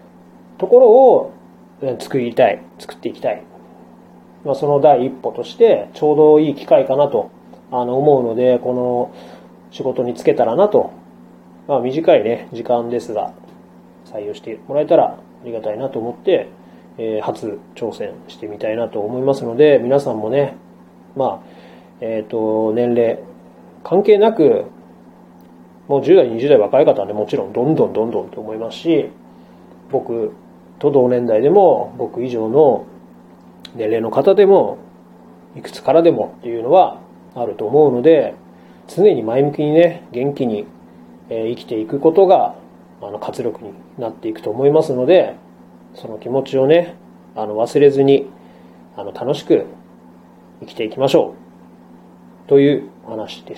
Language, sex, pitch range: Japanese, male, 90-145 Hz